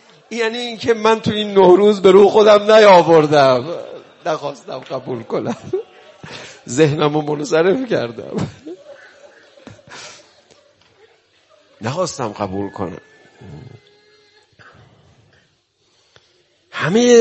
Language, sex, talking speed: Persian, male, 75 wpm